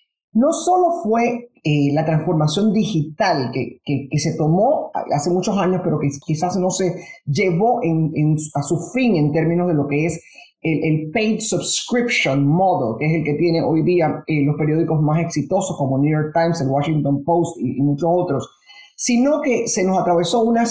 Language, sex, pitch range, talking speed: English, male, 150-195 Hz, 185 wpm